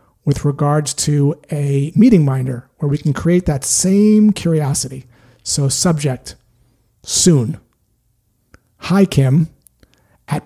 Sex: male